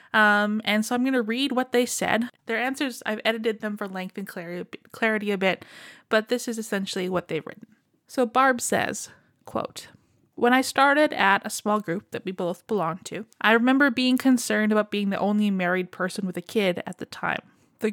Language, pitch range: English, 195-240 Hz